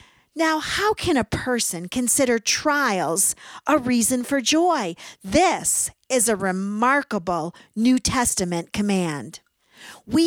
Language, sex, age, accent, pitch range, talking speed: English, female, 50-69, American, 210-295 Hz, 110 wpm